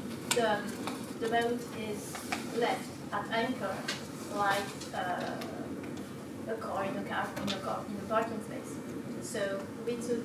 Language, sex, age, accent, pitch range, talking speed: English, female, 30-49, French, 215-255 Hz, 125 wpm